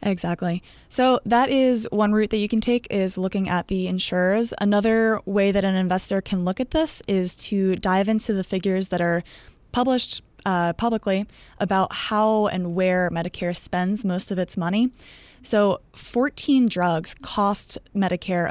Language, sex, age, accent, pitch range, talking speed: English, female, 20-39, American, 175-210 Hz, 160 wpm